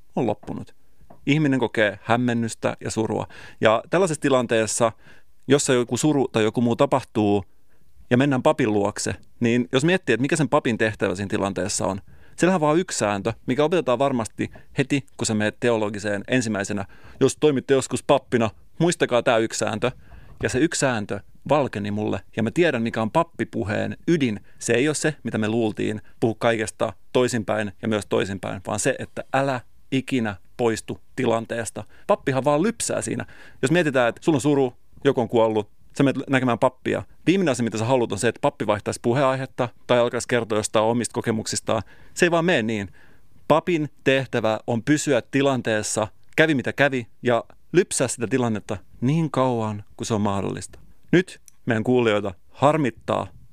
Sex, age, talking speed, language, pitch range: male, 30-49, 165 wpm, Finnish, 110-135 Hz